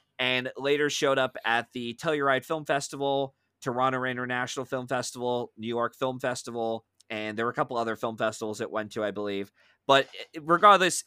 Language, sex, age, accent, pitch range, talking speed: English, male, 20-39, American, 115-145 Hz, 175 wpm